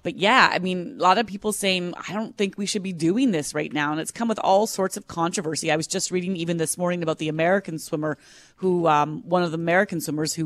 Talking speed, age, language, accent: 260 wpm, 30-49, English, American